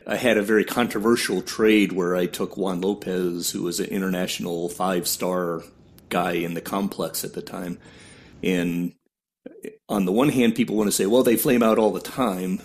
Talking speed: 185 wpm